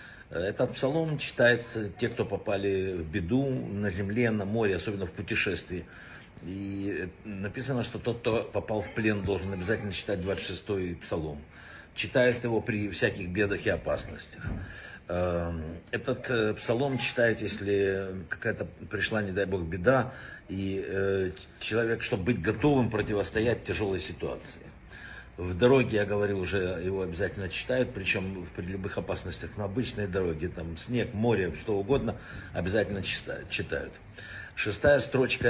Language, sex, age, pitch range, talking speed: Russian, male, 50-69, 95-115 Hz, 130 wpm